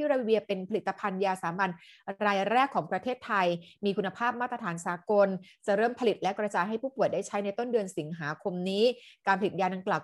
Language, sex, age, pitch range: Thai, female, 30-49, 195-245 Hz